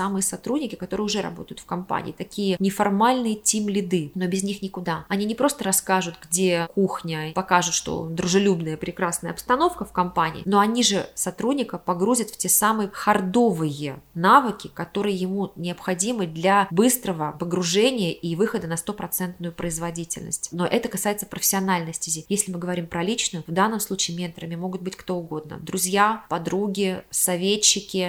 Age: 20-39